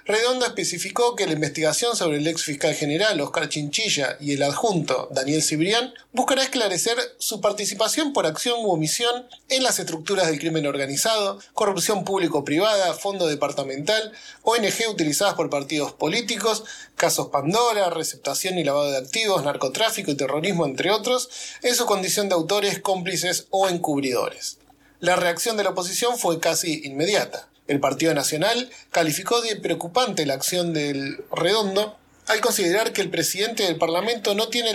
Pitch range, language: 150-215 Hz, Spanish